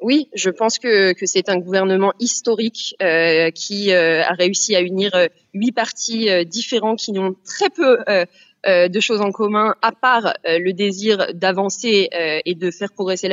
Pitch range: 175-215 Hz